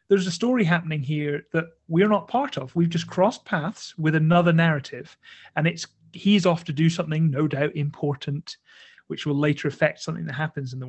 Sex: male